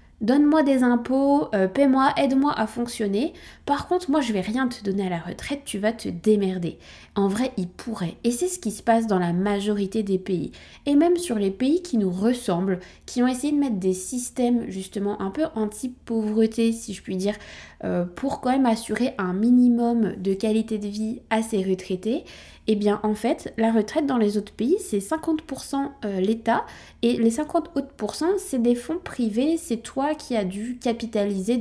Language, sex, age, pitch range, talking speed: French, female, 20-39, 200-255 Hz, 195 wpm